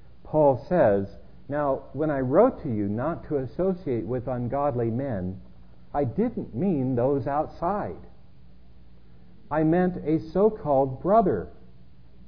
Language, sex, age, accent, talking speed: English, male, 50-69, American, 115 wpm